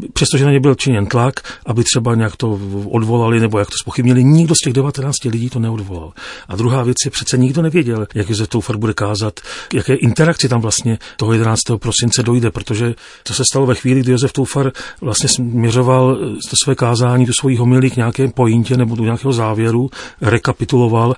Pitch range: 110-130 Hz